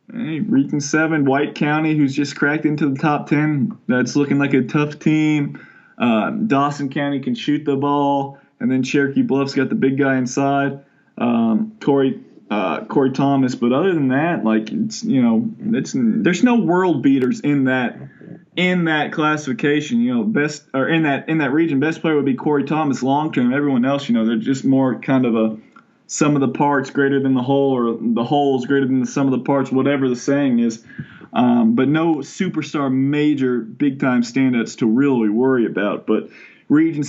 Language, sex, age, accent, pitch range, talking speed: English, male, 20-39, American, 135-170 Hz, 195 wpm